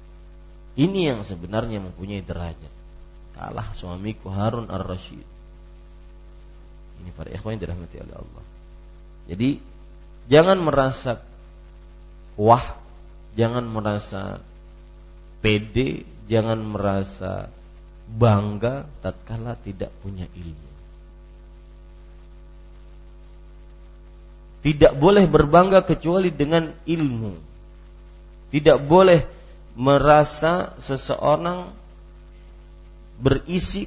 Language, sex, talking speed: Malay, male, 75 wpm